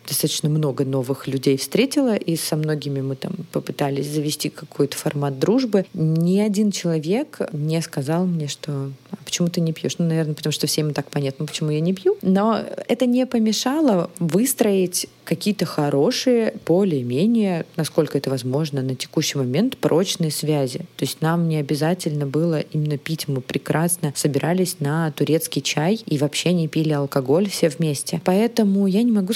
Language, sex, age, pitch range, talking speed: Russian, female, 20-39, 150-190 Hz, 160 wpm